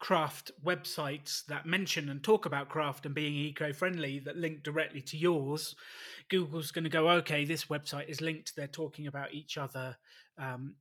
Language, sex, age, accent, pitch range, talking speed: English, male, 30-49, British, 145-175 Hz, 170 wpm